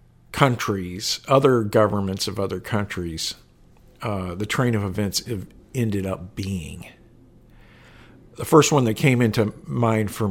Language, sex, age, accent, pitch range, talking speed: English, male, 50-69, American, 95-125 Hz, 130 wpm